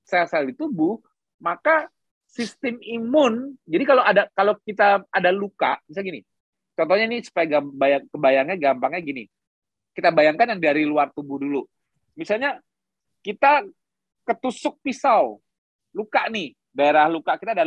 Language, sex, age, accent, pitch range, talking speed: Indonesian, male, 30-49, native, 170-245 Hz, 130 wpm